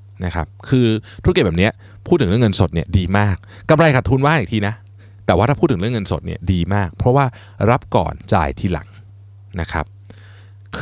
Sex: male